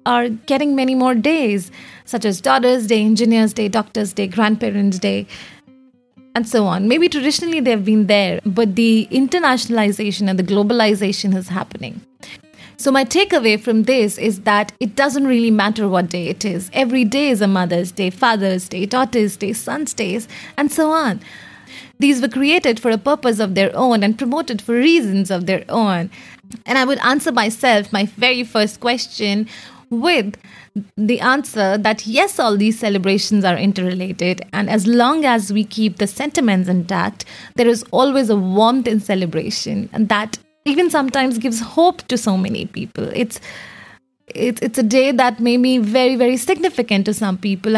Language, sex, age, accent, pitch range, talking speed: English, female, 30-49, Indian, 205-255 Hz, 170 wpm